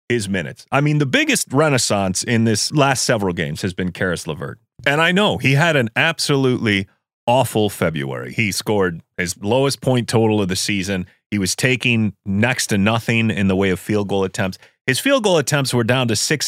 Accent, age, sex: American, 30-49, male